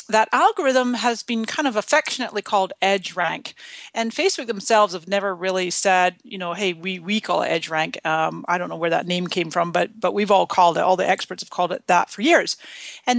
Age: 40-59